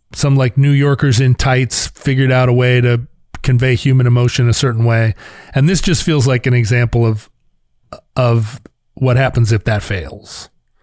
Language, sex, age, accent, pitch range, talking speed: English, male, 40-59, American, 115-145 Hz, 170 wpm